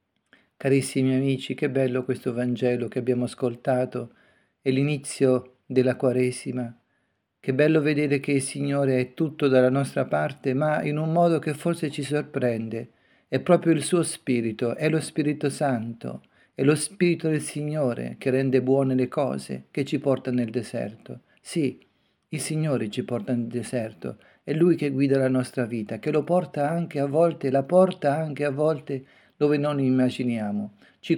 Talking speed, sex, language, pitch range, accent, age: 165 wpm, male, Italian, 125-150 Hz, native, 40-59